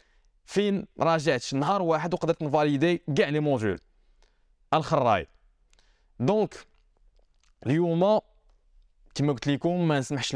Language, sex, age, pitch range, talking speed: Arabic, male, 20-39, 125-165 Hz, 100 wpm